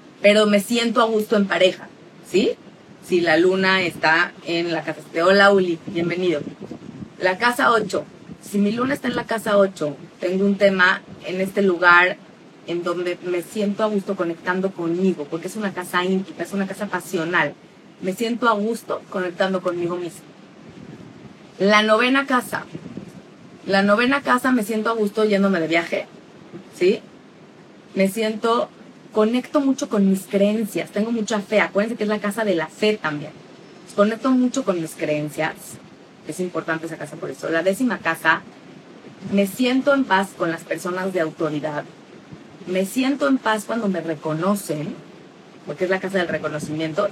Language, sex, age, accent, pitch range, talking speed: Spanish, female, 30-49, Mexican, 170-210 Hz, 165 wpm